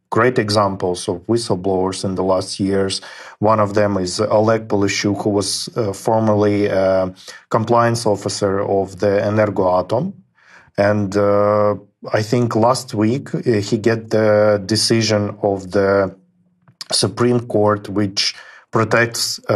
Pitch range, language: 100-110 Hz, Ukrainian